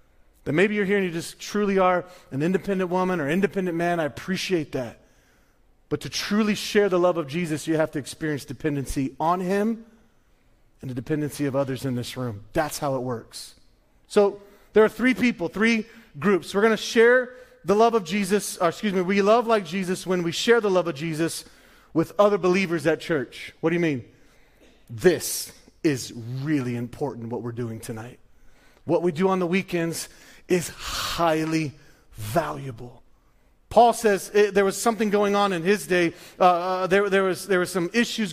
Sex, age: male, 30-49